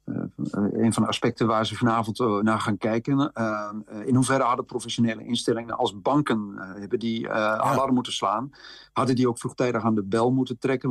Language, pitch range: Dutch, 110-130 Hz